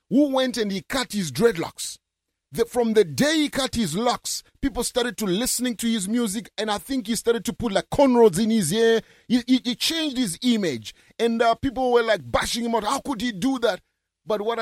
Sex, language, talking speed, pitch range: male, English, 220 wpm, 165-245 Hz